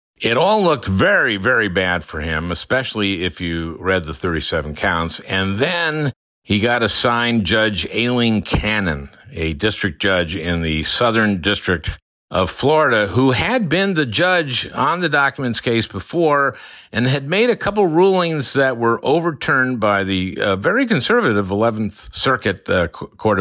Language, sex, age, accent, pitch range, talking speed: English, male, 50-69, American, 90-125 Hz, 155 wpm